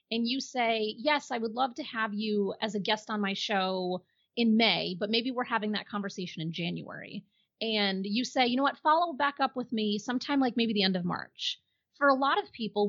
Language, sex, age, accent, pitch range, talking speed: English, female, 30-49, American, 195-240 Hz, 230 wpm